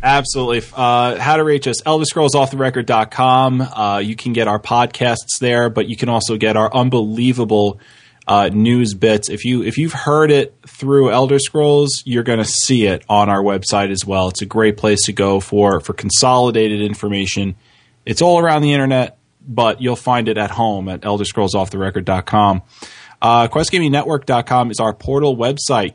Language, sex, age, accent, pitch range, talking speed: English, male, 20-39, American, 105-140 Hz, 195 wpm